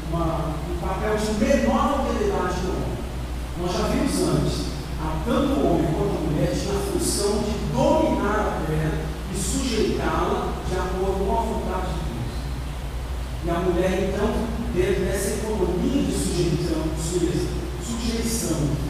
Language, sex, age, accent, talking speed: Portuguese, male, 40-59, Brazilian, 135 wpm